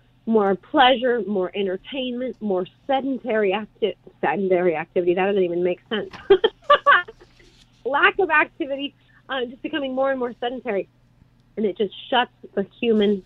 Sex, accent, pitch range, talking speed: female, American, 195-255 Hz, 135 wpm